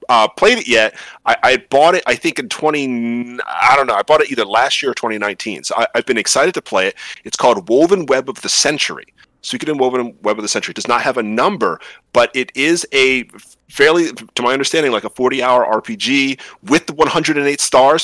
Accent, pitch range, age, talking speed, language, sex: American, 115-165 Hz, 30-49, 235 wpm, English, male